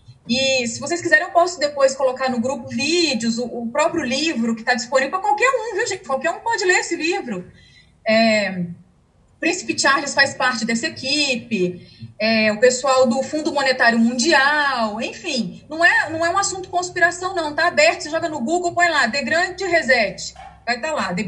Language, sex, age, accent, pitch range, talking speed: Portuguese, female, 30-49, Brazilian, 250-330 Hz, 190 wpm